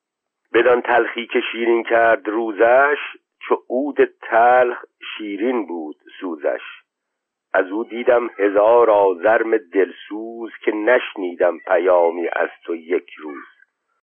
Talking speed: 105 wpm